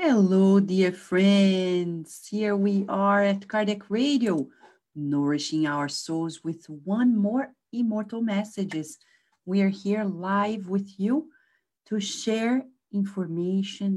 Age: 40-59